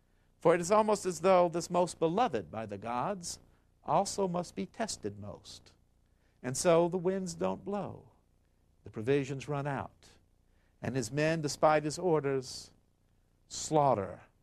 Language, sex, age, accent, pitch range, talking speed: Italian, male, 60-79, American, 90-130 Hz, 140 wpm